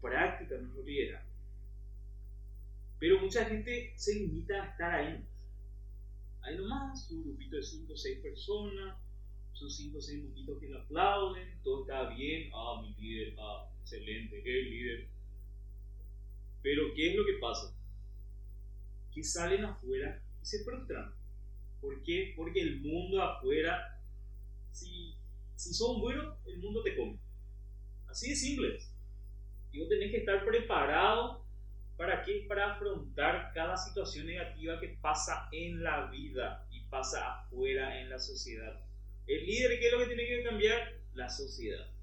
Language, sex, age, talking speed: Spanish, male, 30-49, 155 wpm